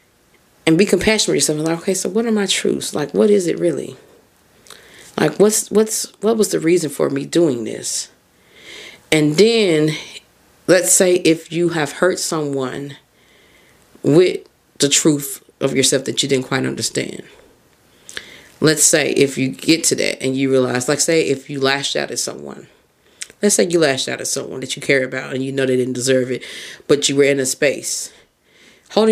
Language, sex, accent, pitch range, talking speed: English, female, American, 130-165 Hz, 185 wpm